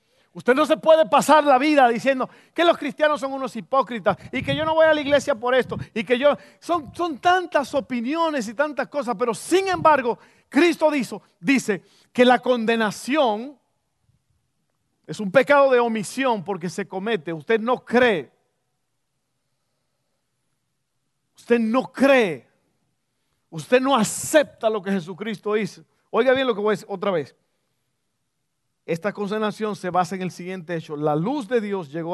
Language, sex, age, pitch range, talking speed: Spanish, male, 50-69, 165-250 Hz, 160 wpm